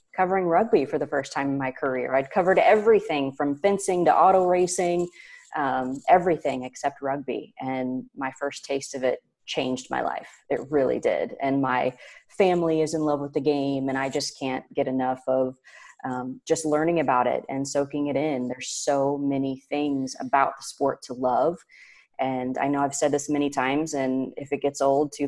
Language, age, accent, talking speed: English, 30-49, American, 190 wpm